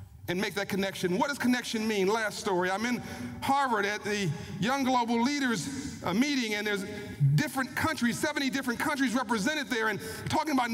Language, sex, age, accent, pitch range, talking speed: English, male, 40-59, American, 180-270 Hz, 180 wpm